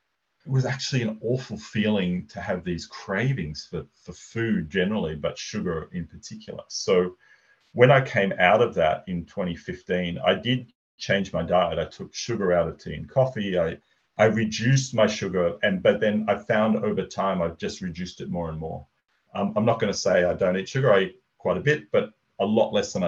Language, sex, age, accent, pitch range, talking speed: English, male, 40-59, Australian, 90-115 Hz, 205 wpm